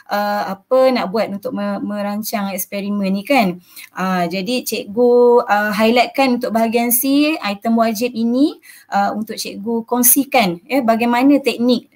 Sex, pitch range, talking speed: female, 200-250 Hz, 135 wpm